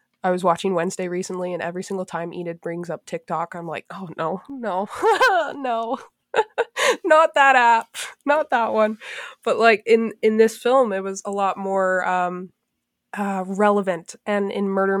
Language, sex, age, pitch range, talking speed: English, female, 20-39, 180-215 Hz, 170 wpm